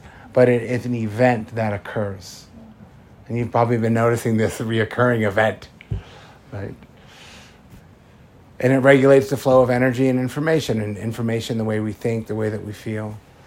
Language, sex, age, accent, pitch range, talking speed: English, male, 50-69, American, 110-130 Hz, 160 wpm